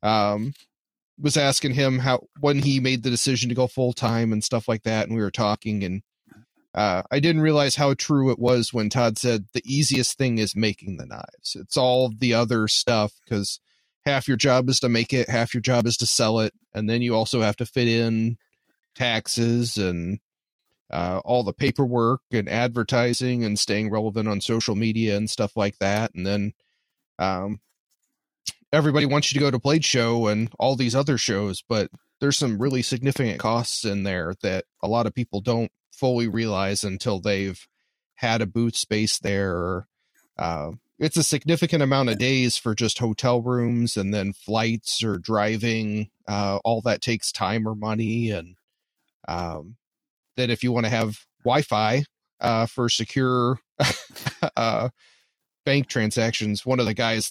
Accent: American